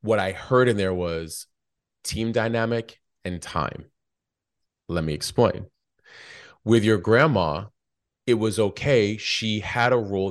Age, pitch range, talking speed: 30-49, 95-115 Hz, 135 wpm